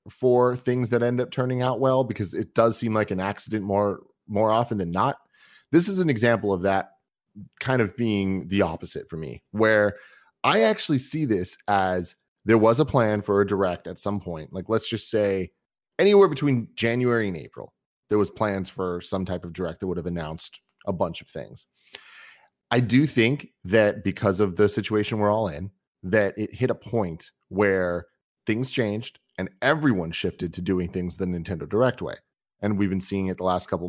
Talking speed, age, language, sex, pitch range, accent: 195 wpm, 30-49, English, male, 95-115 Hz, American